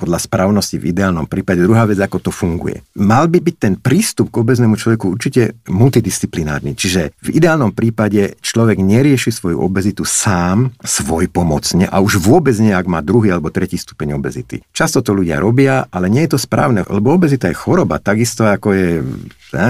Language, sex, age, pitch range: Slovak, male, 50-69, 95-120 Hz